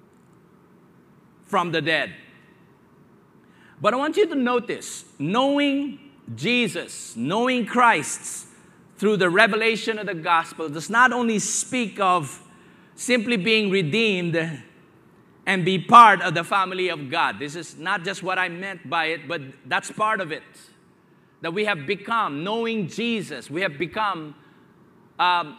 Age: 50-69